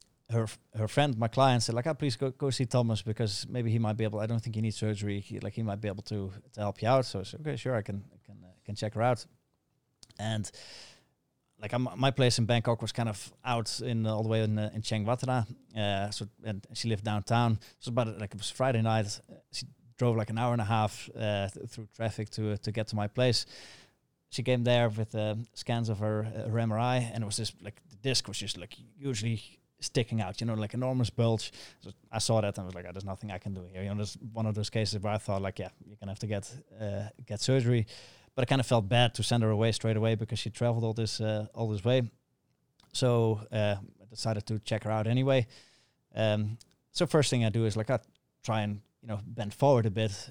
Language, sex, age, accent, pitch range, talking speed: English, male, 20-39, Dutch, 105-120 Hz, 260 wpm